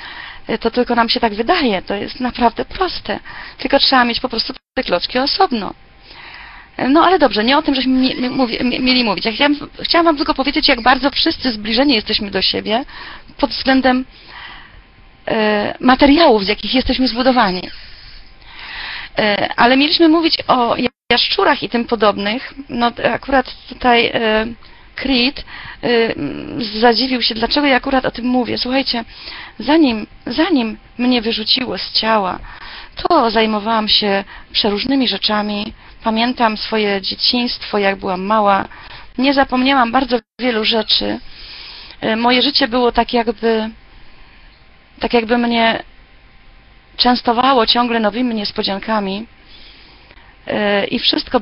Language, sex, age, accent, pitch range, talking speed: Polish, female, 30-49, native, 220-265 Hz, 120 wpm